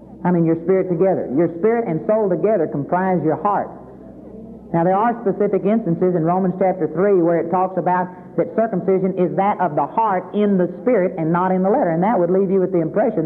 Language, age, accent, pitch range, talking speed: English, 50-69, American, 175-215 Hz, 220 wpm